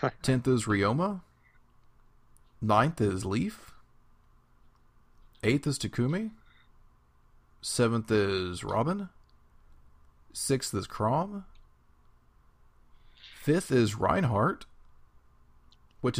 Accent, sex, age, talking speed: American, male, 30-49, 70 wpm